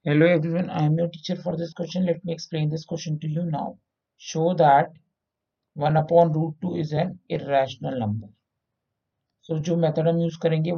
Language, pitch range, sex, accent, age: Hindi, 120-170 Hz, male, native, 50-69